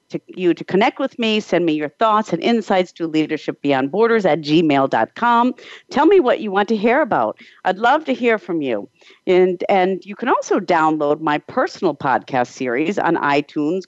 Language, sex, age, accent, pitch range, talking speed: English, female, 50-69, American, 160-225 Hz, 190 wpm